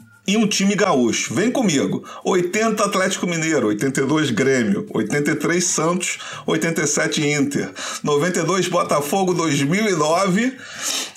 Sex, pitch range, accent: male, 135-195 Hz, Brazilian